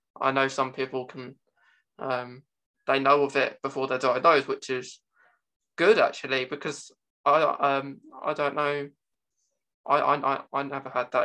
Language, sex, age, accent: English, male, 20-39, British